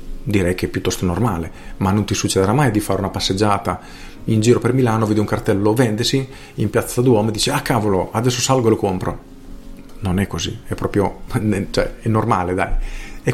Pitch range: 95-125 Hz